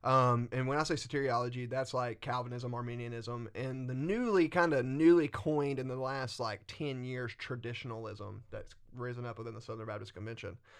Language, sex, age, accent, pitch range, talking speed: English, male, 30-49, American, 115-135 Hz, 180 wpm